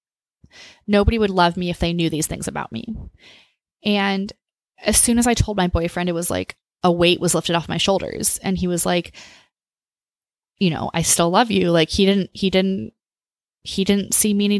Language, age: English, 20-39